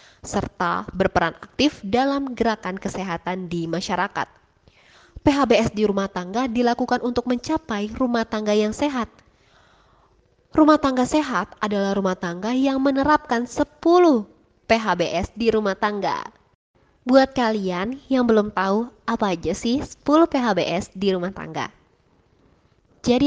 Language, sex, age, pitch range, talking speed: Indonesian, female, 20-39, 195-270 Hz, 120 wpm